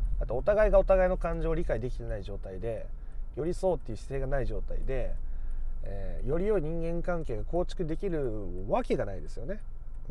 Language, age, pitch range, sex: Japanese, 30-49, 110-170 Hz, male